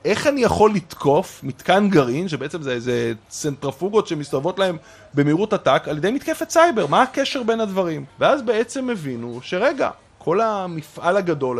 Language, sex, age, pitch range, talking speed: Hebrew, male, 30-49, 135-195 Hz, 150 wpm